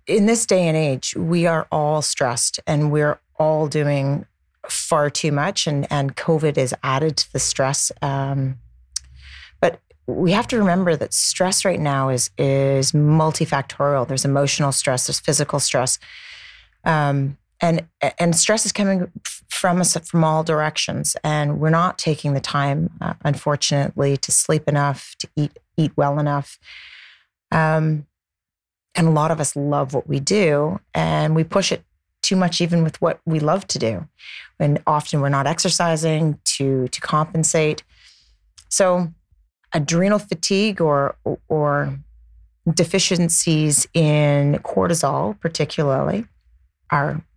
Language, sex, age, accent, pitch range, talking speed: English, female, 30-49, American, 140-170 Hz, 140 wpm